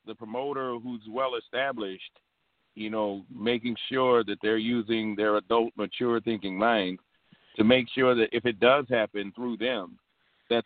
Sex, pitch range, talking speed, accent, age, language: male, 100-120 Hz, 160 wpm, American, 50-69, English